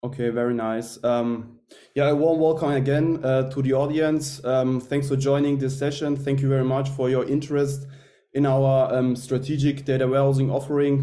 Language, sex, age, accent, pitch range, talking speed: German, male, 20-39, German, 130-140 Hz, 180 wpm